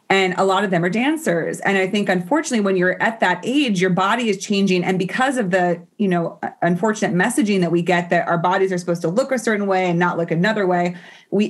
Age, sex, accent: 30-49, female, American